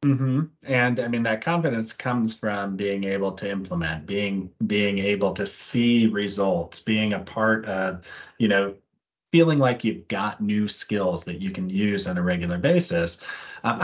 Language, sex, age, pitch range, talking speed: English, male, 30-49, 100-135 Hz, 170 wpm